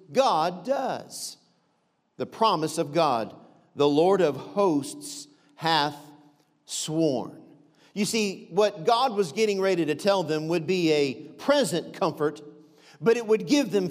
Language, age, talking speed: English, 50-69, 140 wpm